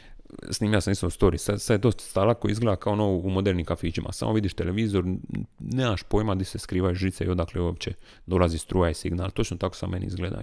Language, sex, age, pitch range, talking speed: Croatian, male, 30-49, 90-100 Hz, 220 wpm